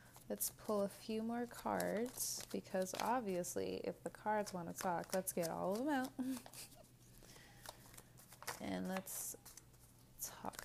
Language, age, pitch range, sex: English, 20-39, 170-215 Hz, female